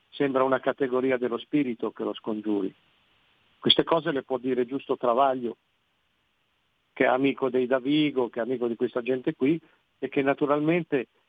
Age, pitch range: 50-69, 130-160 Hz